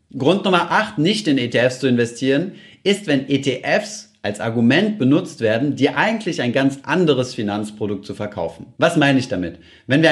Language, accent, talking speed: German, German, 170 wpm